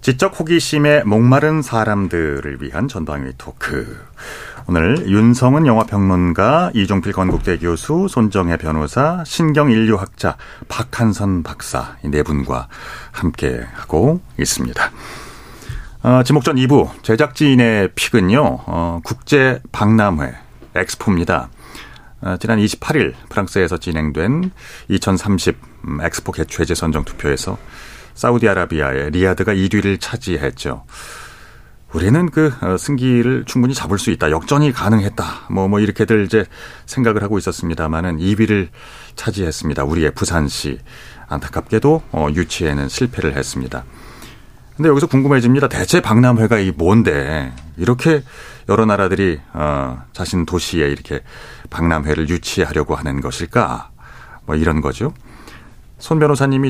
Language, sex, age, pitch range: Korean, male, 40-59, 80-125 Hz